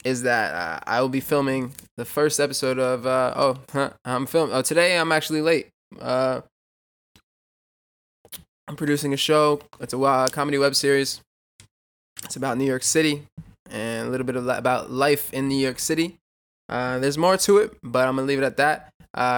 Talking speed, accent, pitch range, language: 190 wpm, American, 125-160 Hz, English